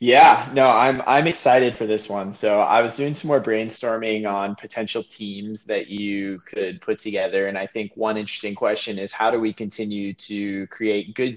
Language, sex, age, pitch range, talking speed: English, male, 20-39, 100-115 Hz, 195 wpm